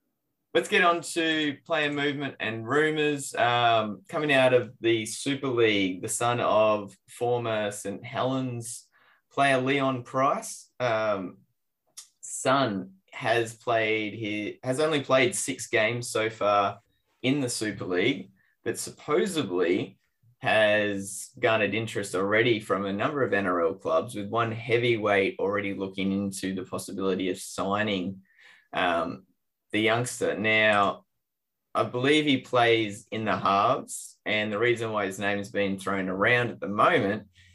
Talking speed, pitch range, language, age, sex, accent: 140 wpm, 100-125 Hz, English, 20-39, male, Australian